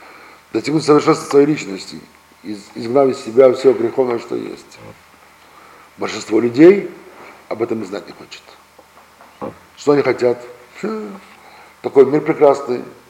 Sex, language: male, Russian